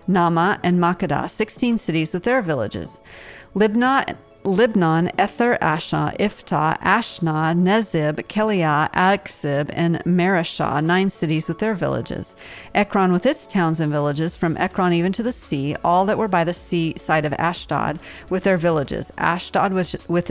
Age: 50-69